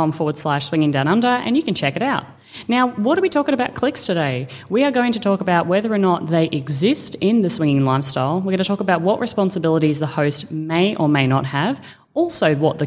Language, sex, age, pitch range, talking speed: English, female, 30-49, 150-195 Hz, 240 wpm